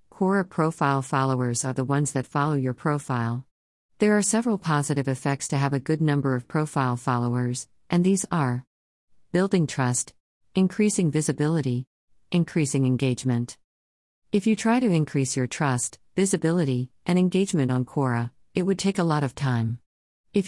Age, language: 50-69, English